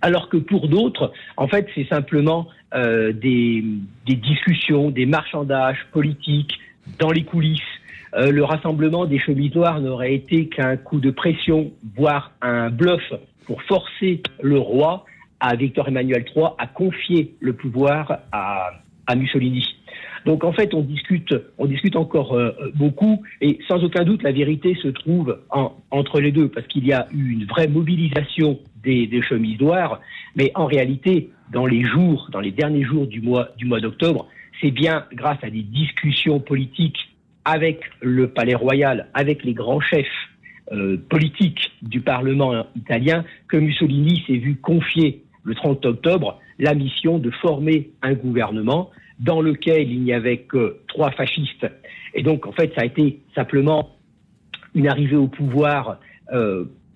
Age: 50-69